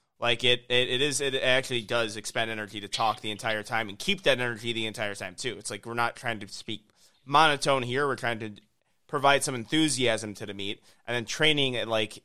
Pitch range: 110-135 Hz